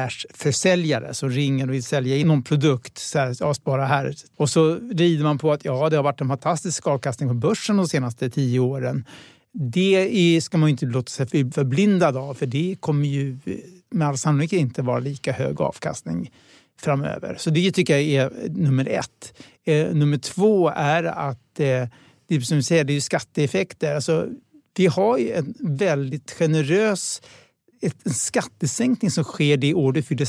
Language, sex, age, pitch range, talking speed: Swedish, male, 60-79, 140-170 Hz, 170 wpm